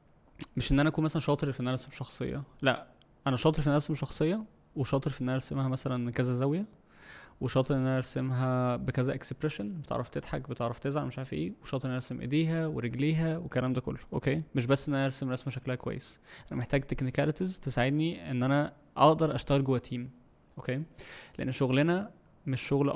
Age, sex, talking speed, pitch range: 20-39, male, 185 wpm, 130-145 Hz